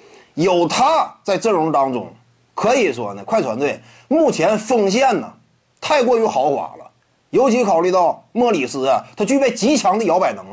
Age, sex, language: 30-49, male, Chinese